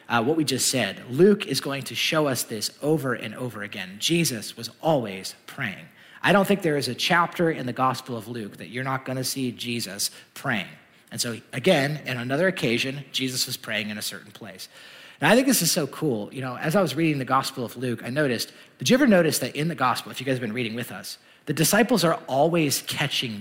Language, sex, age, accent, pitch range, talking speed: English, male, 30-49, American, 120-170 Hz, 235 wpm